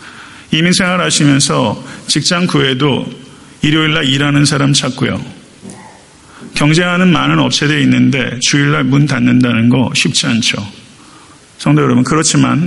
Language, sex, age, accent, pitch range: Korean, male, 40-59, native, 140-180 Hz